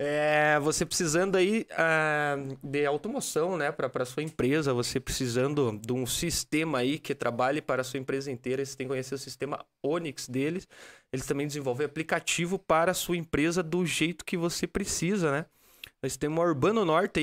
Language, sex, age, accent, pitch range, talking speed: Portuguese, male, 20-39, Brazilian, 135-180 Hz, 180 wpm